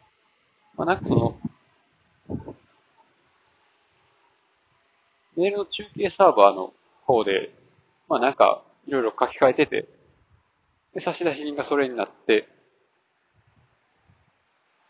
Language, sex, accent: Japanese, male, native